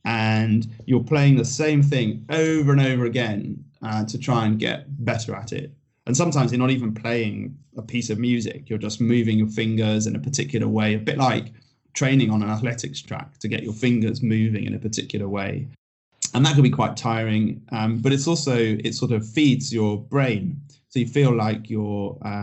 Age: 20-39